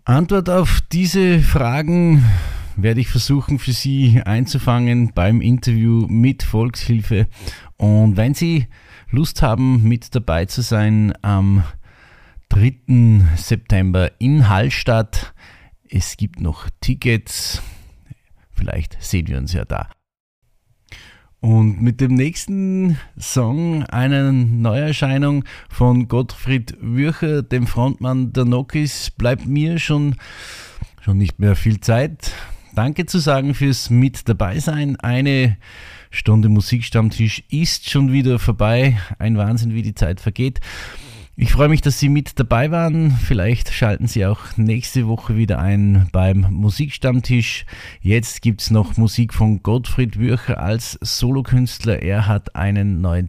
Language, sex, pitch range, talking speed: German, male, 95-130 Hz, 125 wpm